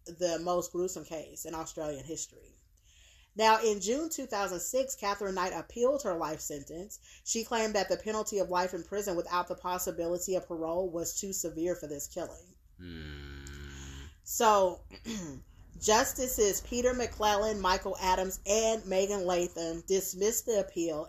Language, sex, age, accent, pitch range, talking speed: English, female, 30-49, American, 170-210 Hz, 140 wpm